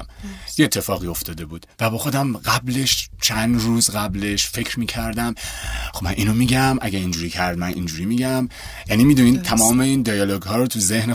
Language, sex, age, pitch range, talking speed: Persian, male, 30-49, 100-130 Hz, 180 wpm